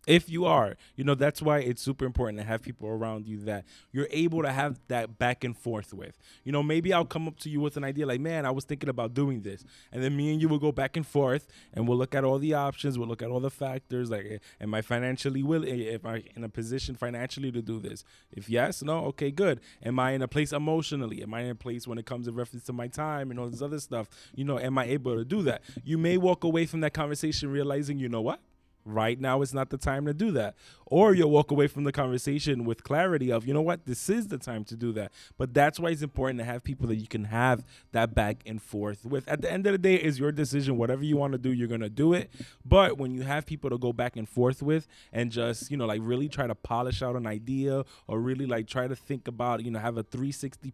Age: 20-39